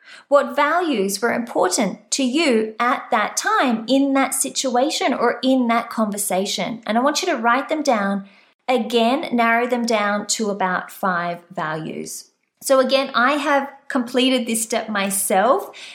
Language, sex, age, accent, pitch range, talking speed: English, female, 30-49, Australian, 215-275 Hz, 150 wpm